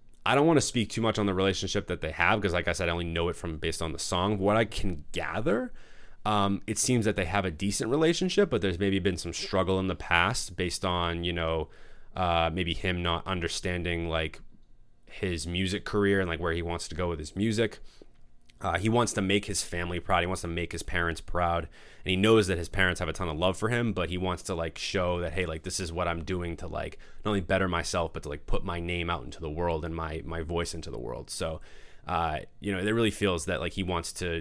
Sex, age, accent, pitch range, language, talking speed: male, 20-39, American, 85-100 Hz, English, 260 wpm